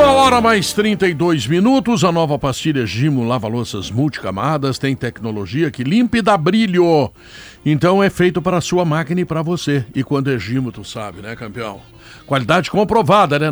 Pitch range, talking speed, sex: 125-160 Hz, 170 wpm, male